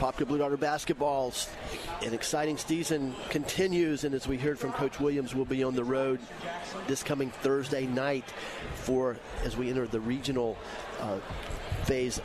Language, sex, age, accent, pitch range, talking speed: English, male, 40-59, American, 130-155 Hz, 155 wpm